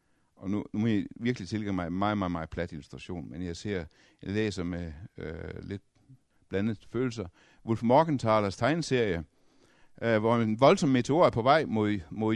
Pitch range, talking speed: 105-150 Hz, 180 wpm